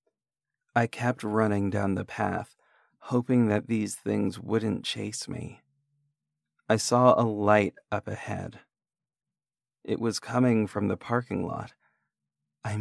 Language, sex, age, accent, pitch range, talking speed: English, male, 40-59, American, 100-120 Hz, 125 wpm